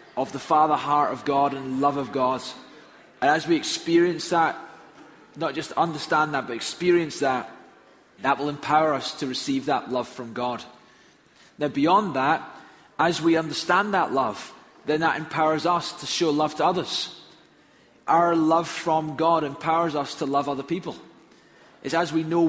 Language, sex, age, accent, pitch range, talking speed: English, male, 20-39, British, 145-170 Hz, 170 wpm